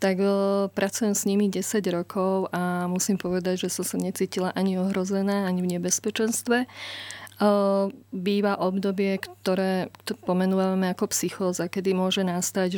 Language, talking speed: Slovak, 125 wpm